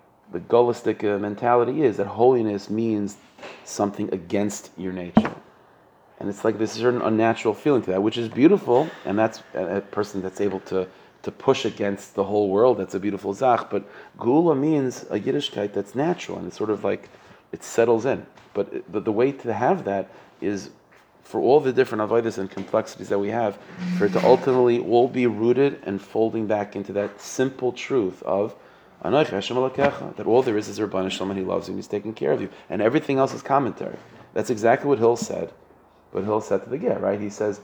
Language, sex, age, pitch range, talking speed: English, male, 40-59, 100-130 Hz, 195 wpm